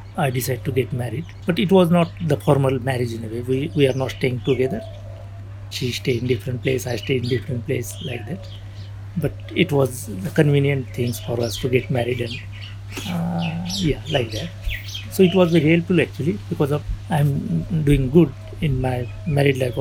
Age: 60-79